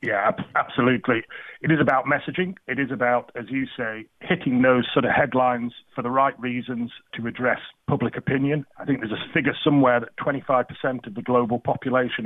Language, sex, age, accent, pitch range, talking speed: English, male, 30-49, British, 120-140 Hz, 180 wpm